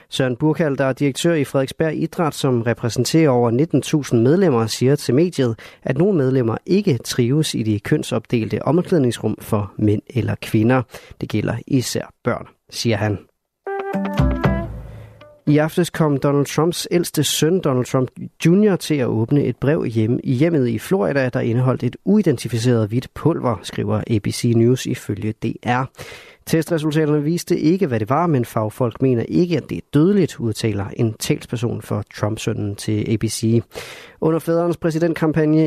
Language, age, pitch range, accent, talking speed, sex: Danish, 30-49, 115-155 Hz, native, 150 wpm, male